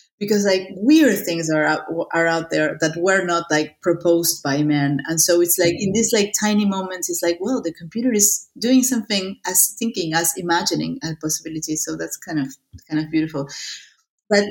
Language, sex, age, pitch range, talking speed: English, female, 30-49, 165-200 Hz, 195 wpm